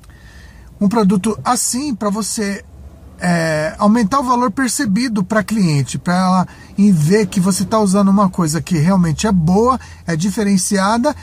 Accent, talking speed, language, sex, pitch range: Brazilian, 145 wpm, Portuguese, male, 180-215 Hz